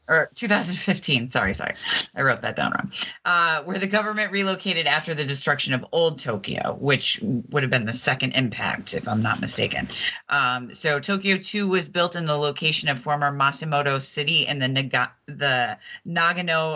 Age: 30-49